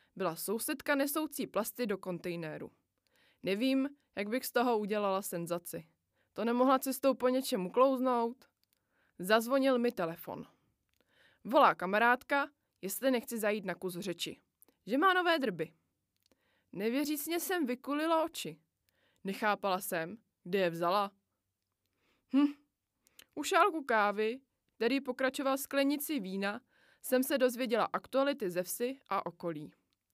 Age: 20-39